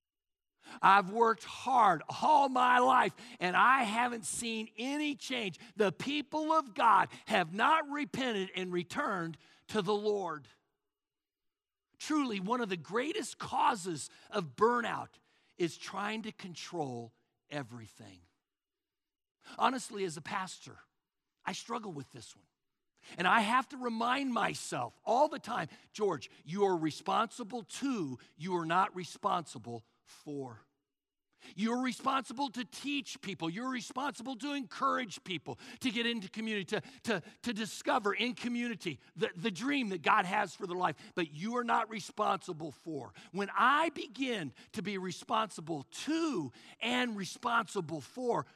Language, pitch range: English, 165-245 Hz